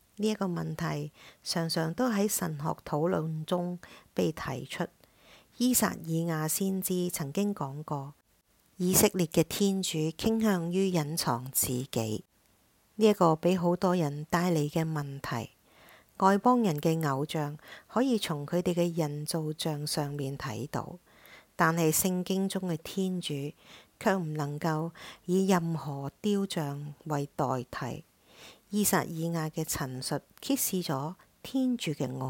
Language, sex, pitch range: English, female, 145-185 Hz